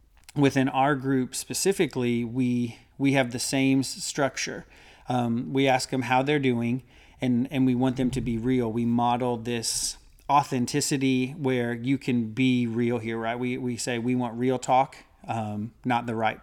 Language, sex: English, male